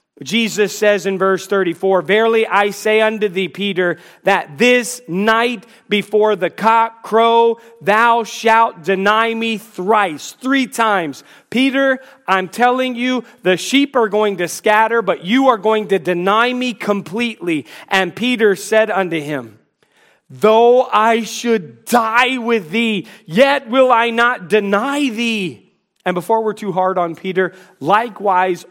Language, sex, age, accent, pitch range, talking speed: English, male, 40-59, American, 180-240 Hz, 140 wpm